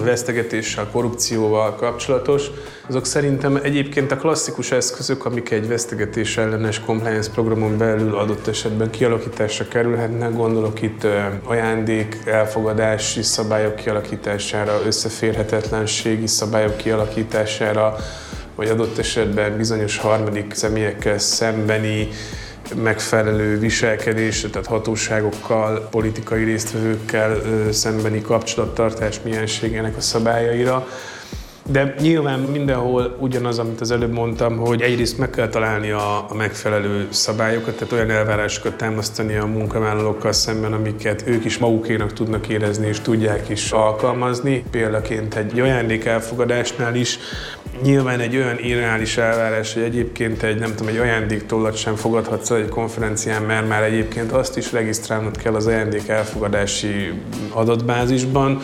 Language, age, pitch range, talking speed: Hungarian, 20-39, 110-115 Hz, 115 wpm